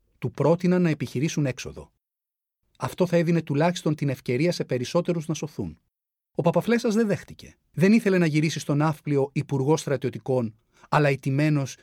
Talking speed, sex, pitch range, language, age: 145 wpm, male, 125-170 Hz, Greek, 40-59